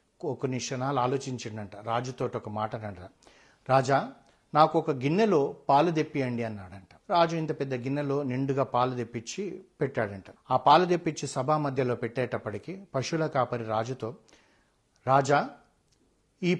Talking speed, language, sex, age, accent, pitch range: 120 wpm, Telugu, male, 60-79, native, 125-160 Hz